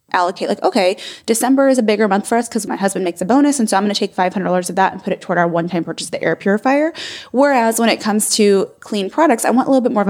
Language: English